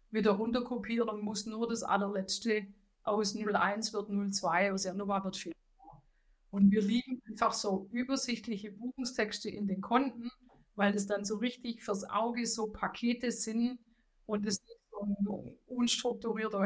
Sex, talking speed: female, 145 wpm